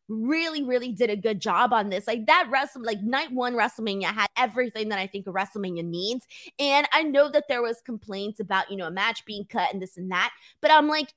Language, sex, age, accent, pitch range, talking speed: English, female, 20-39, American, 215-335 Hz, 235 wpm